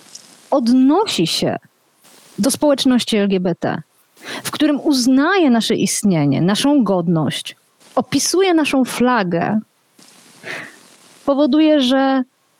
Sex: female